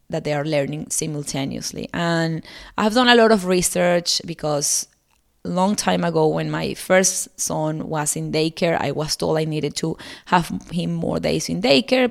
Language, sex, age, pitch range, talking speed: English, female, 20-39, 160-205 Hz, 180 wpm